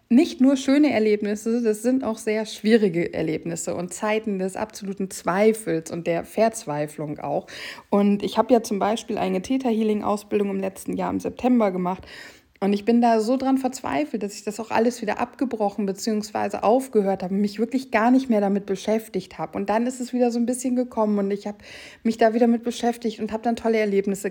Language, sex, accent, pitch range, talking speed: German, female, German, 185-225 Hz, 200 wpm